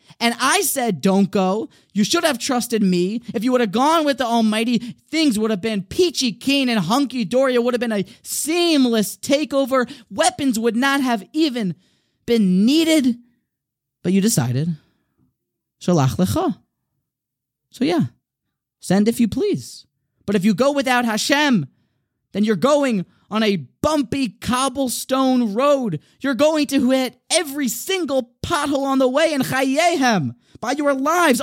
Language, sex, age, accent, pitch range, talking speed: English, male, 20-39, American, 180-265 Hz, 150 wpm